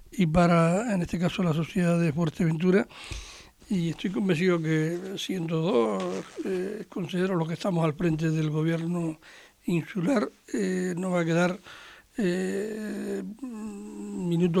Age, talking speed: 60-79, 130 wpm